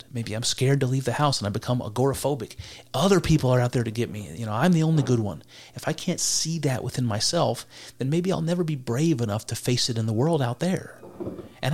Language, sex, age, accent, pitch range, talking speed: English, male, 40-59, American, 115-140 Hz, 250 wpm